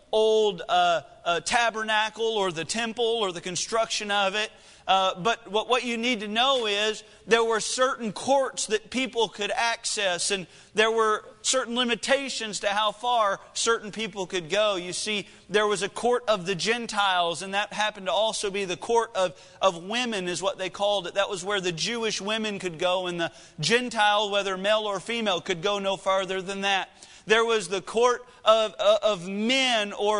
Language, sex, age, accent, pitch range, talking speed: English, male, 40-59, American, 200-235 Hz, 190 wpm